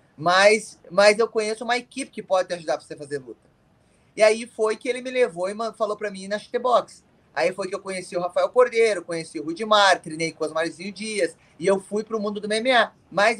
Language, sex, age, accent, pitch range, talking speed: Portuguese, male, 20-39, Brazilian, 175-220 Hz, 235 wpm